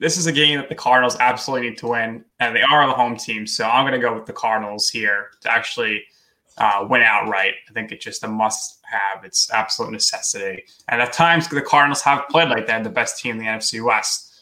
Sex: male